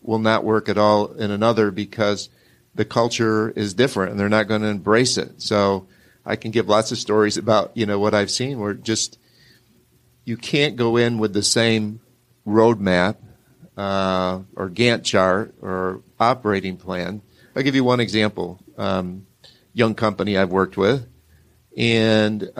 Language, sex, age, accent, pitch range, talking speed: English, male, 50-69, American, 100-120 Hz, 160 wpm